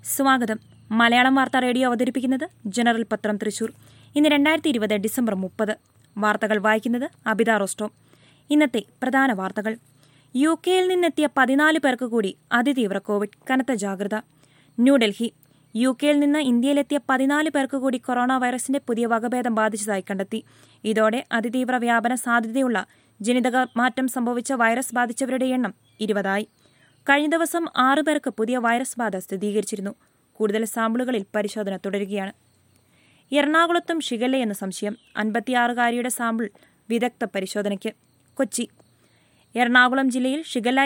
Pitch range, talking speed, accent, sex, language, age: 215-260 Hz, 105 wpm, native, female, Malayalam, 20-39